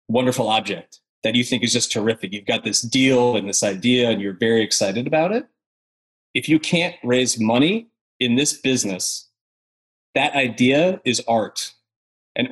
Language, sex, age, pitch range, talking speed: English, male, 30-49, 110-140 Hz, 165 wpm